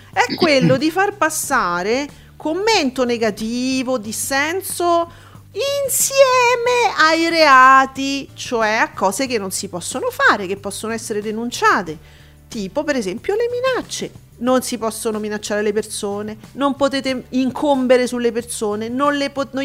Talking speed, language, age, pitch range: 130 wpm, Italian, 40-59, 215-310 Hz